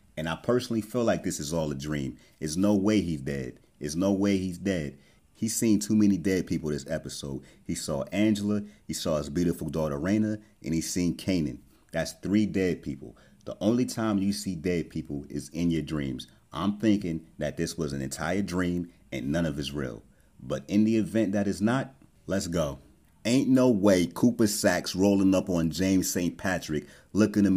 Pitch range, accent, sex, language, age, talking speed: 80-100 Hz, American, male, English, 30-49, 200 wpm